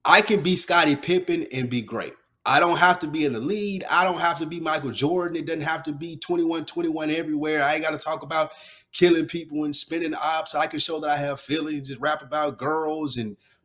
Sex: male